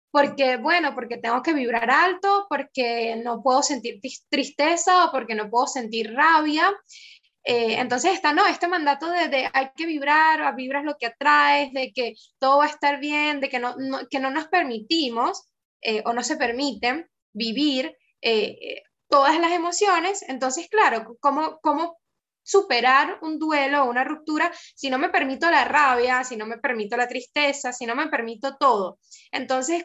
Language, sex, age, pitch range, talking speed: Spanish, female, 10-29, 255-335 Hz, 175 wpm